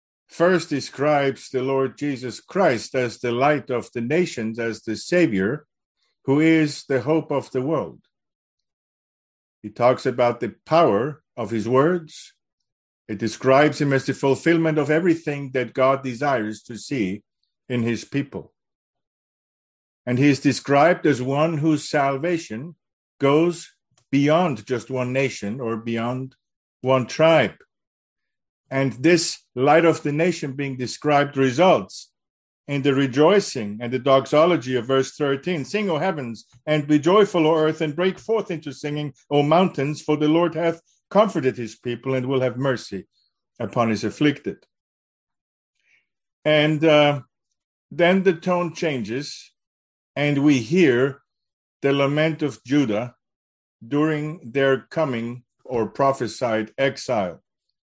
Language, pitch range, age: English, 125-155 Hz, 50-69